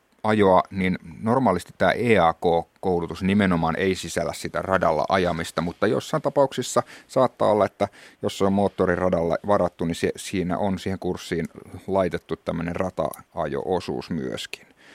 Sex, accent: male, native